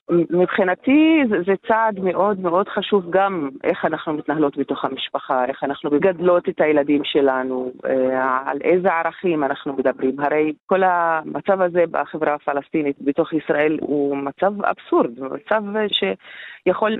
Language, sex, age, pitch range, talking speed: Hebrew, female, 30-49, 145-200 Hz, 130 wpm